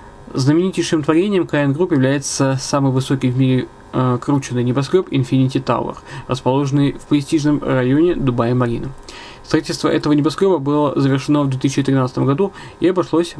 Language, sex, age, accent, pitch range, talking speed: Russian, male, 20-39, native, 135-160 Hz, 125 wpm